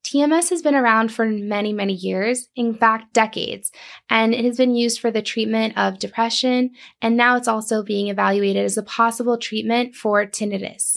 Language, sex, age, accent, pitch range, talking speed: English, female, 10-29, American, 210-245 Hz, 180 wpm